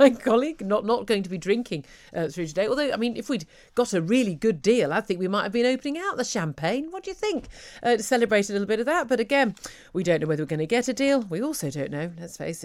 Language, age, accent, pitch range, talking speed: English, 40-59, British, 155-230 Hz, 290 wpm